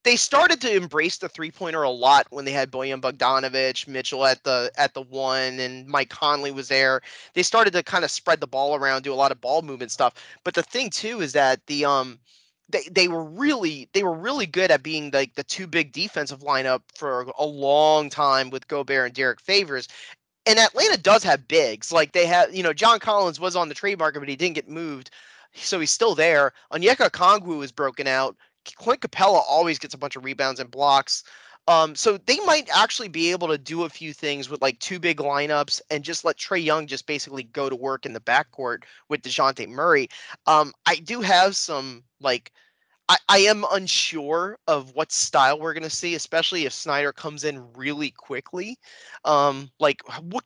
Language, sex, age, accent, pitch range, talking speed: English, male, 20-39, American, 135-180 Hz, 210 wpm